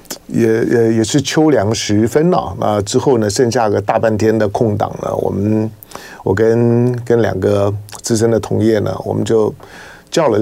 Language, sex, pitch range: Chinese, male, 110-145 Hz